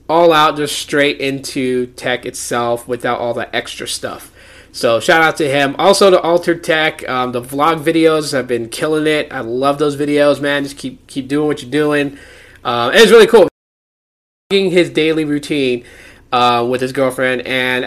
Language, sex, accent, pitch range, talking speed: English, male, American, 125-170 Hz, 180 wpm